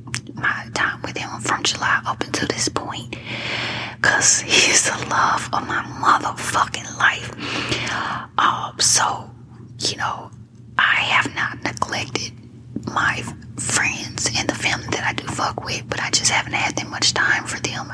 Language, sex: English, female